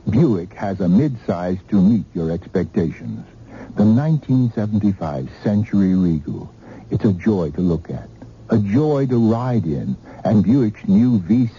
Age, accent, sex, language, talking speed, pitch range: 60-79, American, male, English, 140 wpm, 75-120 Hz